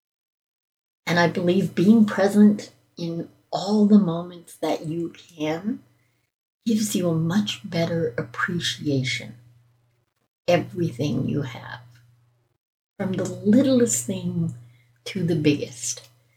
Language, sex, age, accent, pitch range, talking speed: English, female, 60-79, American, 125-190 Hz, 105 wpm